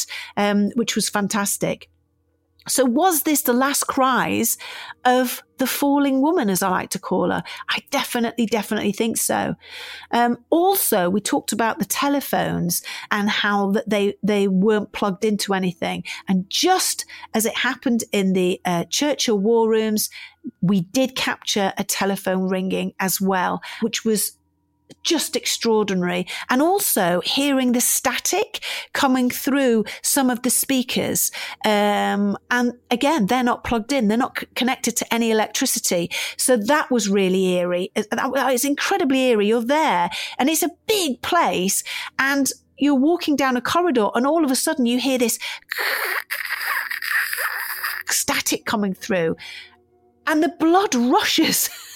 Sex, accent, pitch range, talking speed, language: female, British, 200-275 Hz, 145 wpm, English